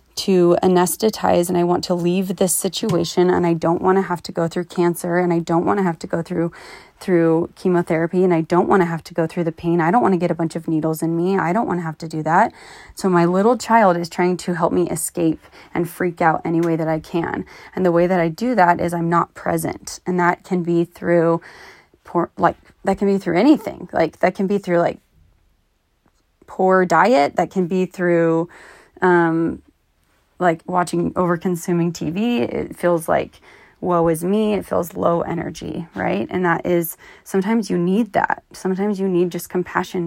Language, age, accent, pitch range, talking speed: English, 20-39, American, 170-185 Hz, 220 wpm